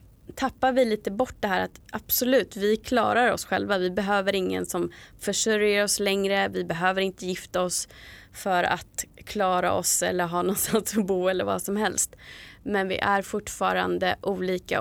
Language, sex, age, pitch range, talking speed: Swedish, female, 20-39, 175-215 Hz, 170 wpm